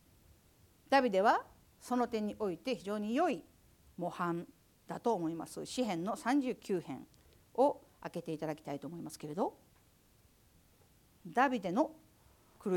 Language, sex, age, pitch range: Japanese, female, 50-69, 210-310 Hz